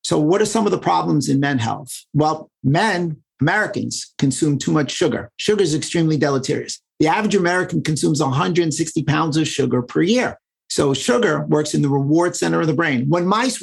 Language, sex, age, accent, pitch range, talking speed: English, male, 50-69, American, 150-180 Hz, 190 wpm